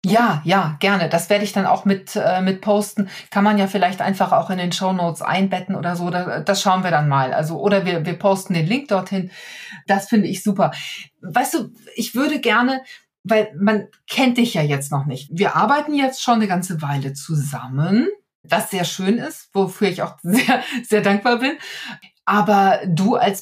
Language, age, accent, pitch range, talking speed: German, 40-59, German, 185-230 Hz, 200 wpm